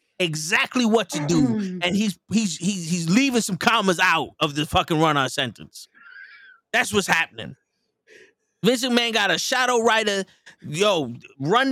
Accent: American